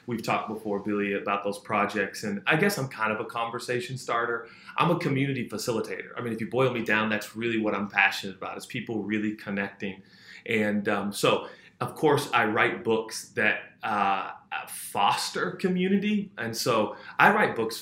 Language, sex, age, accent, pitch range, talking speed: English, male, 30-49, American, 105-120 Hz, 180 wpm